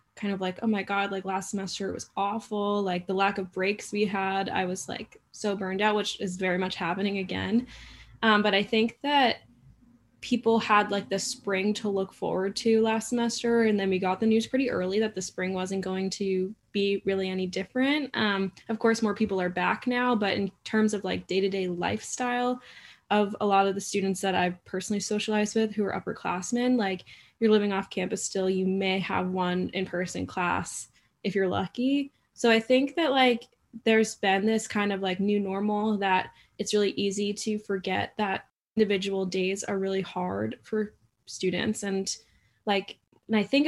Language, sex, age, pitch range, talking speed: English, female, 20-39, 190-215 Hz, 190 wpm